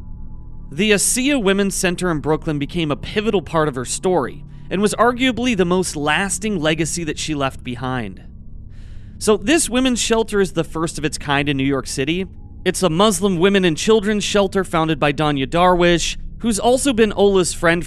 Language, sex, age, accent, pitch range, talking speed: English, male, 30-49, American, 145-195 Hz, 180 wpm